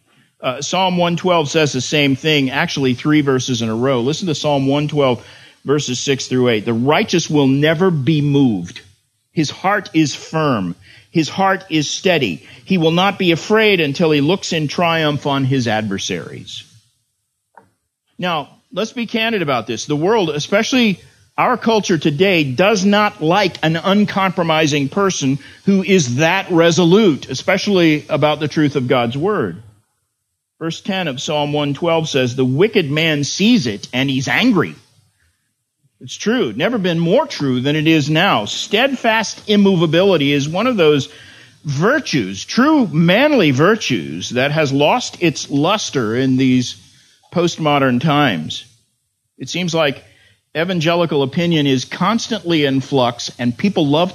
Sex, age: male, 50-69